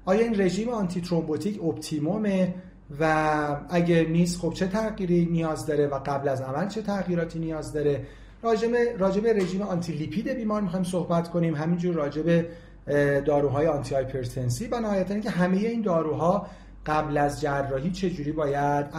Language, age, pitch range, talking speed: Persian, 40-59, 145-190 Hz, 150 wpm